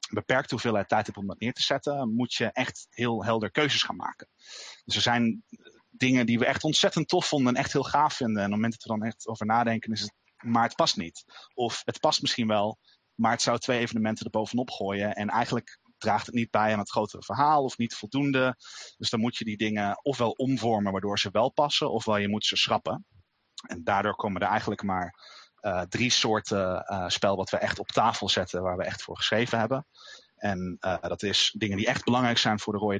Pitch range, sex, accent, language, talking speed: 100-120 Hz, male, Dutch, Dutch, 230 wpm